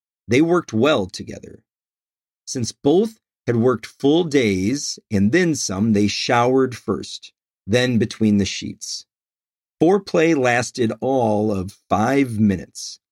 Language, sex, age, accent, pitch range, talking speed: English, male, 40-59, American, 105-155 Hz, 120 wpm